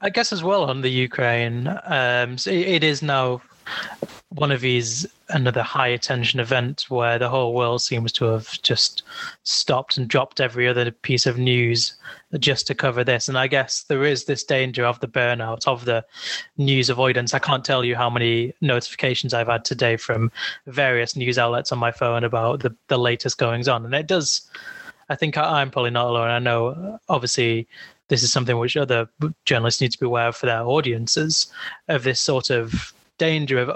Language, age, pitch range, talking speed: English, 20-39, 120-140 Hz, 190 wpm